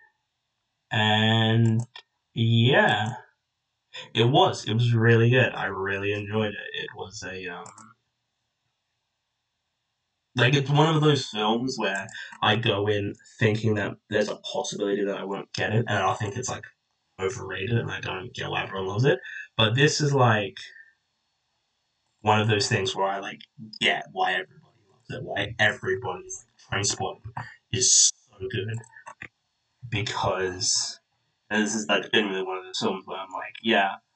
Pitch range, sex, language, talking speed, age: 105-125 Hz, male, English, 155 wpm, 10-29